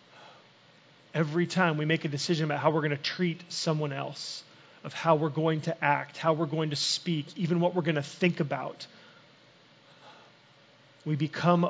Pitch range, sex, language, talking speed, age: 145-175 Hz, male, English, 175 wpm, 30-49